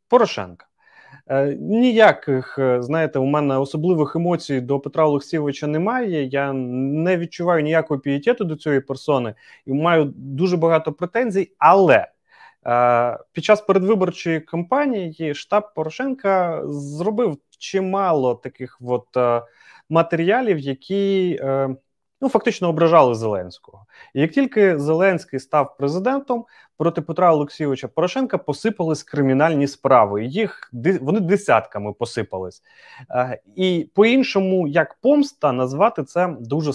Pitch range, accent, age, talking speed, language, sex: 140-195 Hz, native, 30-49, 115 wpm, Ukrainian, male